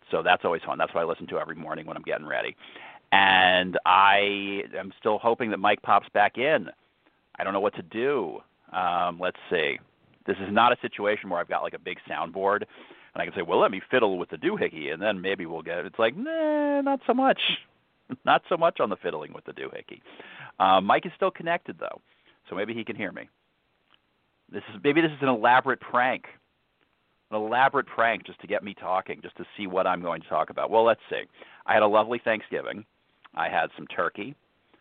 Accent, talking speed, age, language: American, 220 wpm, 40-59, English